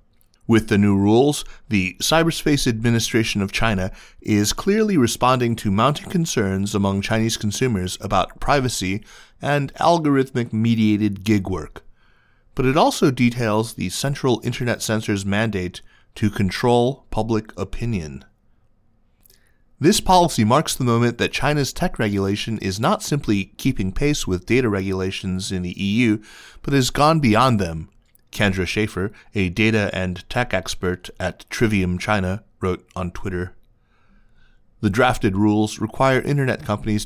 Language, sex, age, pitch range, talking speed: English, male, 30-49, 100-120 Hz, 130 wpm